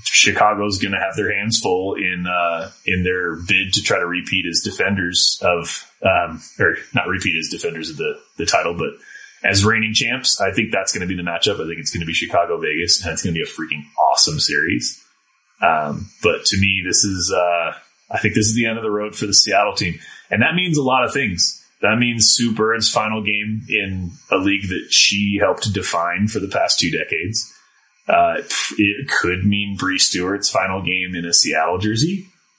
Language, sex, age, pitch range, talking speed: English, male, 30-49, 95-115 Hz, 220 wpm